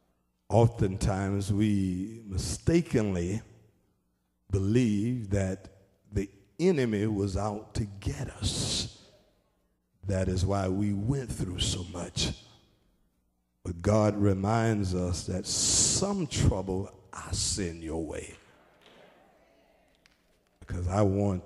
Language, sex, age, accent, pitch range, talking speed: English, male, 50-69, American, 90-110 Hz, 95 wpm